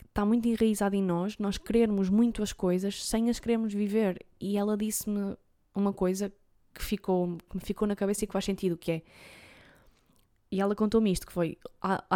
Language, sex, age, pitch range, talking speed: Portuguese, female, 20-39, 185-230 Hz, 190 wpm